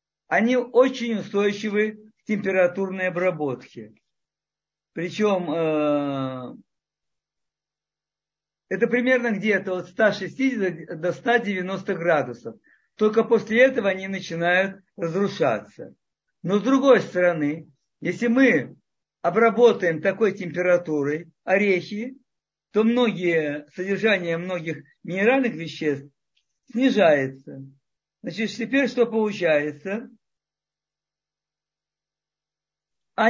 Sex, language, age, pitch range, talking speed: male, Russian, 50-69, 170-225 Hz, 80 wpm